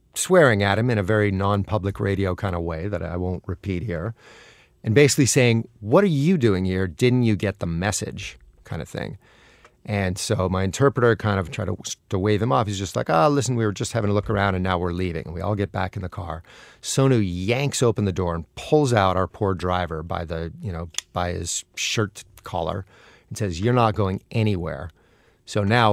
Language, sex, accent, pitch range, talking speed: English, male, American, 95-115 Hz, 220 wpm